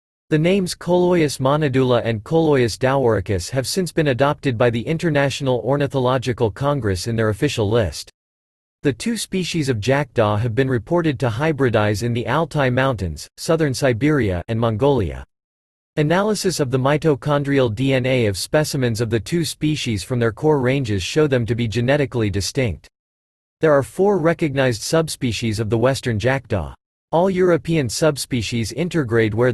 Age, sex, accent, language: 40-59, male, American, English